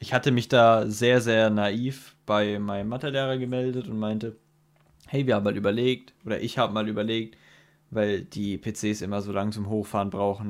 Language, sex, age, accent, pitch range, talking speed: German, male, 20-39, German, 105-130 Hz, 185 wpm